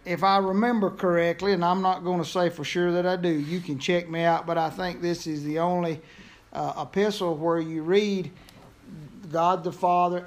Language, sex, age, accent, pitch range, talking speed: English, male, 50-69, American, 160-195 Hz, 205 wpm